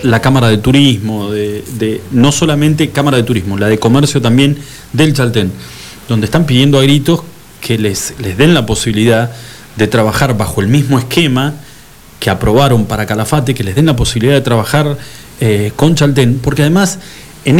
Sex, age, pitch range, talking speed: male, 40-59, 110-145 Hz, 165 wpm